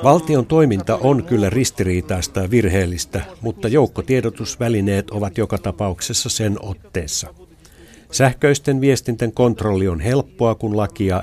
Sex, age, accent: male, 60-79, native